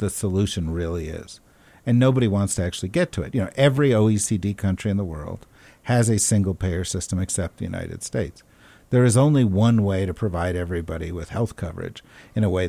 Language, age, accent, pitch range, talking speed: English, 50-69, American, 95-125 Hz, 200 wpm